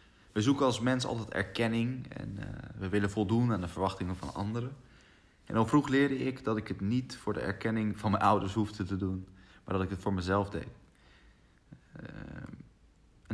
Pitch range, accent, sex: 95-120 Hz, Dutch, male